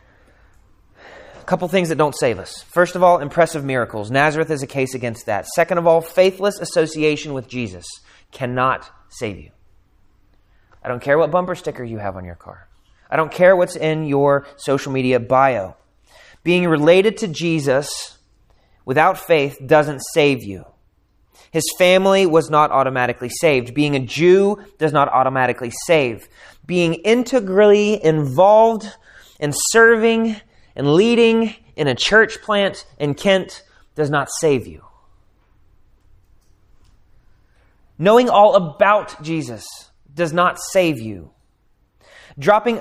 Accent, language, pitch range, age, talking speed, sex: American, English, 110-180 Hz, 30-49, 135 wpm, male